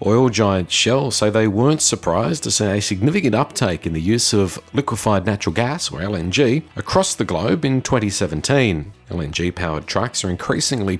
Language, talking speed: English, 165 wpm